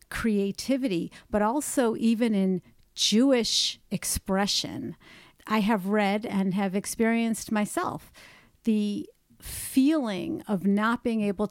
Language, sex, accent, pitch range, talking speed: English, female, American, 190-220 Hz, 105 wpm